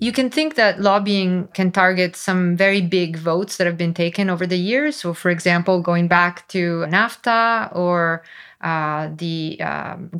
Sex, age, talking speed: female, 20-39, 170 wpm